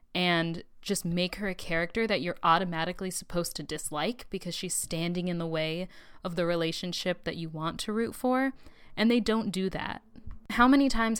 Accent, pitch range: American, 170-215 Hz